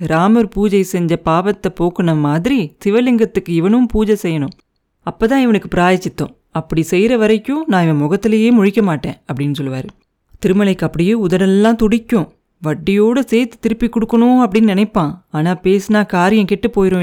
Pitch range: 160-220 Hz